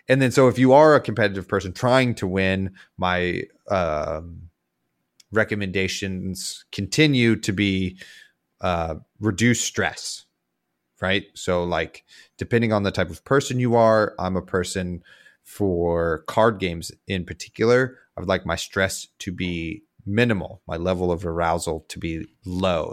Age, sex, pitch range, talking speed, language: 30-49, male, 85-105 Hz, 145 wpm, English